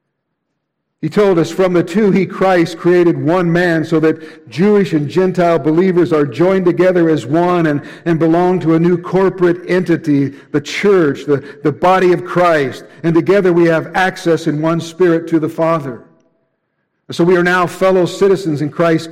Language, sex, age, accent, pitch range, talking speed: English, male, 60-79, American, 160-190 Hz, 175 wpm